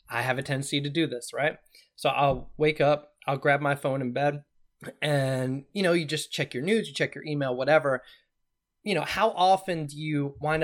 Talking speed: 215 wpm